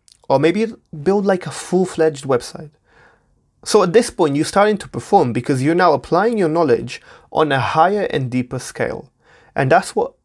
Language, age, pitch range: English, 20-39, 120-160 Hz